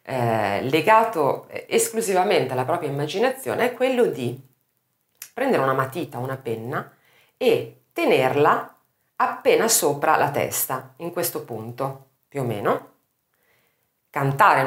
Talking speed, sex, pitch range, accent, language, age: 105 wpm, female, 125-160 Hz, native, Italian, 40-59